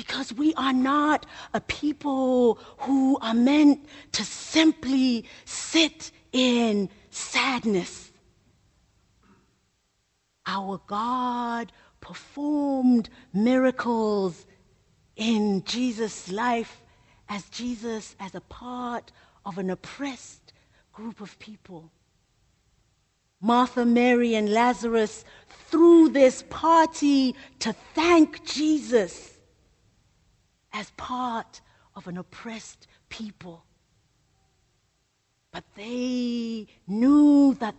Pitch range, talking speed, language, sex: 205-295 Hz, 85 wpm, English, female